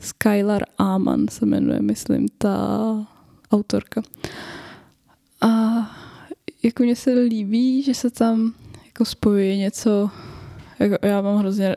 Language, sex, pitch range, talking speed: Czech, female, 205-230 Hz, 110 wpm